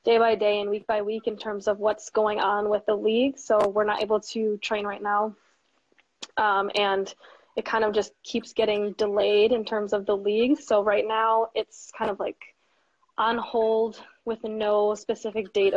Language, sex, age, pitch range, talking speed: English, female, 20-39, 205-230 Hz, 195 wpm